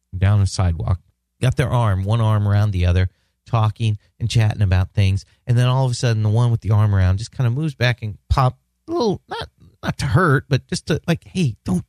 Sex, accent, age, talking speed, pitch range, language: male, American, 40-59, 235 wpm, 95-140 Hz, English